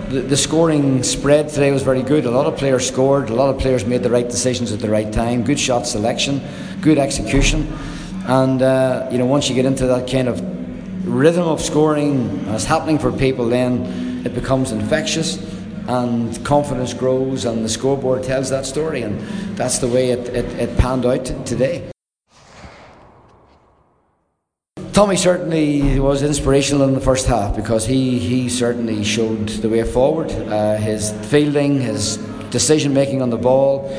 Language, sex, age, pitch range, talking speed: English, male, 50-69, 120-140 Hz, 170 wpm